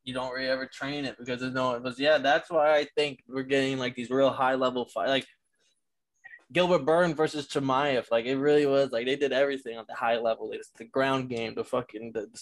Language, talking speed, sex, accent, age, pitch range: English, 220 wpm, male, American, 20-39, 125-160 Hz